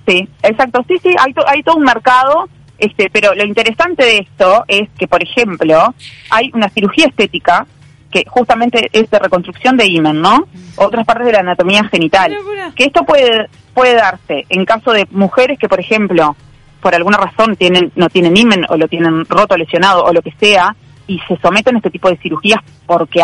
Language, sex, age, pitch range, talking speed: Spanish, female, 30-49, 170-230 Hz, 195 wpm